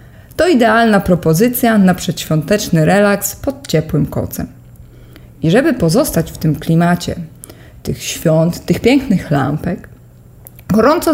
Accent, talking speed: native, 115 wpm